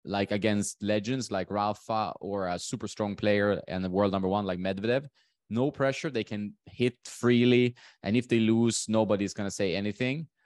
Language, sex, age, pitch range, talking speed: English, male, 20-39, 95-115 Hz, 185 wpm